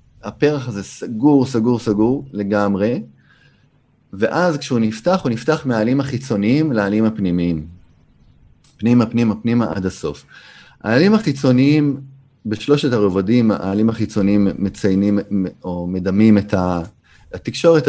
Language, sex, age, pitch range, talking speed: Hebrew, male, 30-49, 95-120 Hz, 105 wpm